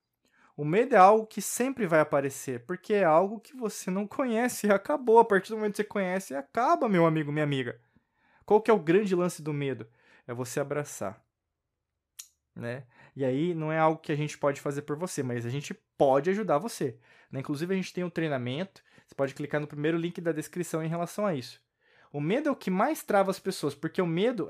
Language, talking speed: Portuguese, 220 wpm